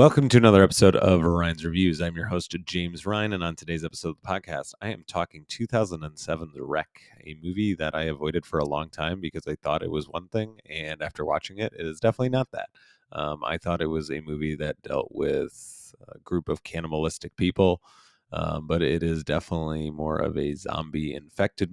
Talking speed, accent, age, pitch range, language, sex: 205 wpm, American, 30-49, 80-95 Hz, English, male